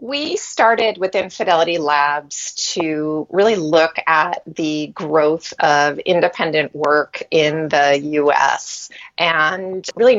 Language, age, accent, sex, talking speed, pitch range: English, 30-49, American, female, 110 wpm, 155-195 Hz